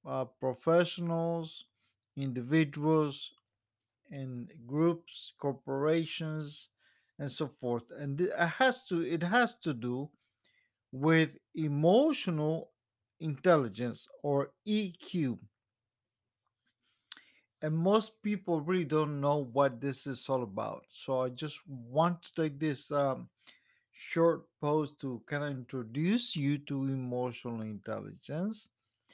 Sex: male